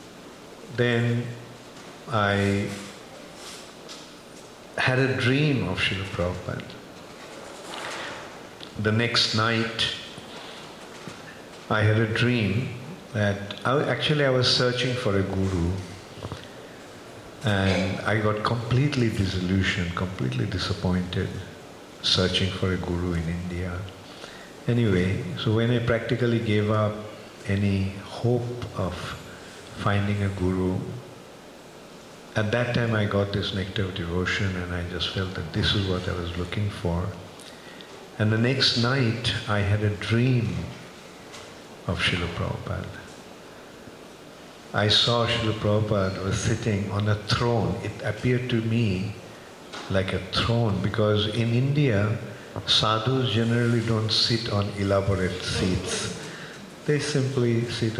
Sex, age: male, 50-69